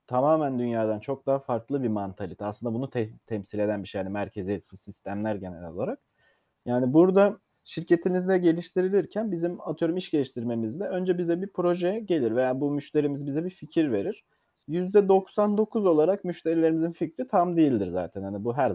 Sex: male